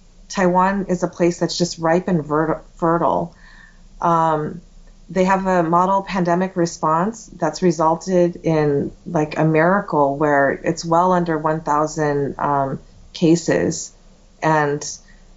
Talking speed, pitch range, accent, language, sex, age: 115 wpm, 155-180 Hz, American, English, female, 30-49